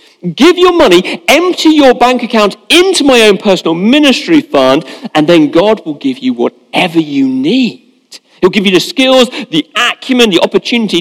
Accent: British